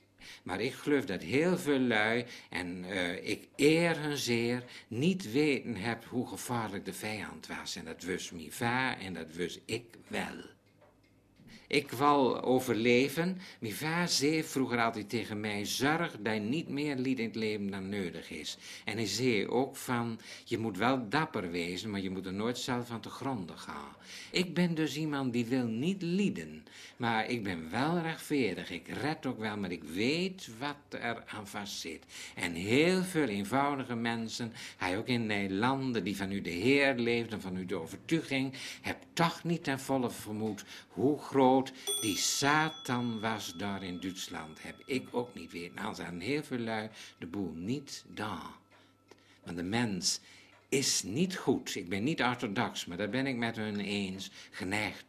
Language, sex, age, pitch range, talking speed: Dutch, male, 60-79, 105-140 Hz, 180 wpm